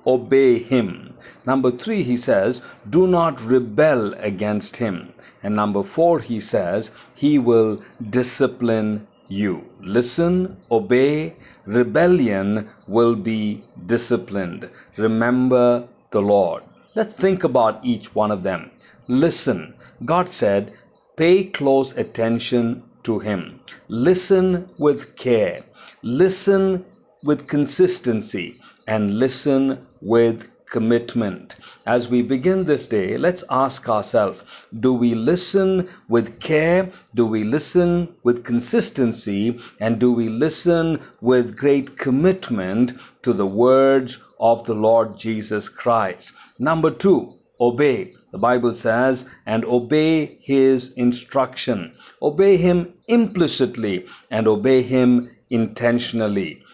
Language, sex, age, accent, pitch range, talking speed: Hindi, male, 50-69, native, 115-155 Hz, 110 wpm